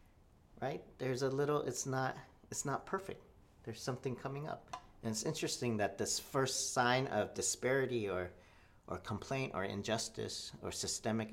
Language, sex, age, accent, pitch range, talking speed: English, male, 40-59, American, 95-140 Hz, 155 wpm